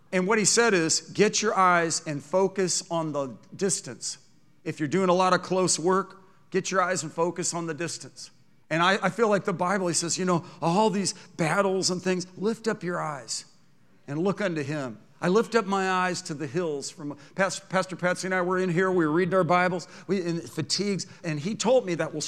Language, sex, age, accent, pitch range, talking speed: English, male, 50-69, American, 160-195 Hz, 225 wpm